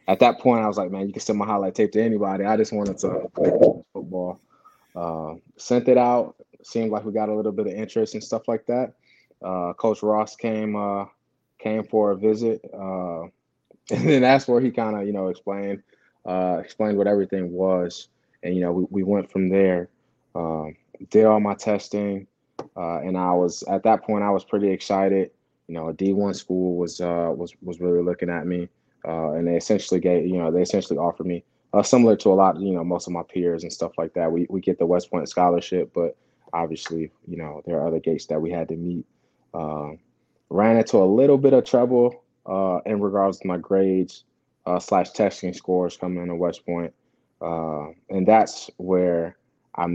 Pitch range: 85-105 Hz